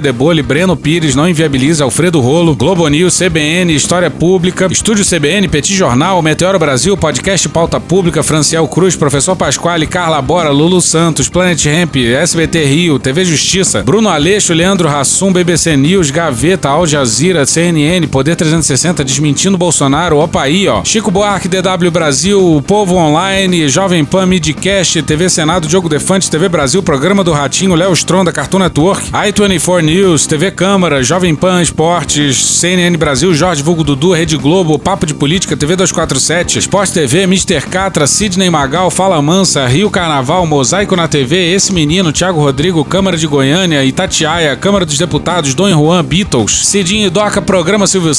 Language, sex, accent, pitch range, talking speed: Portuguese, male, Brazilian, 150-190 Hz, 155 wpm